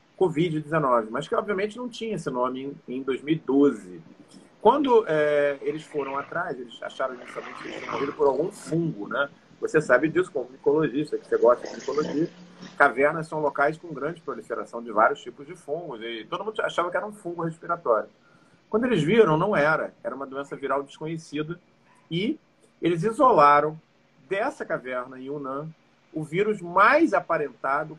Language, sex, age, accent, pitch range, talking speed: Portuguese, male, 40-59, Brazilian, 140-175 Hz, 160 wpm